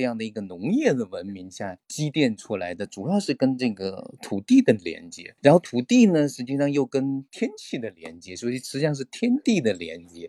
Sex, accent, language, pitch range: male, native, Chinese, 110-150 Hz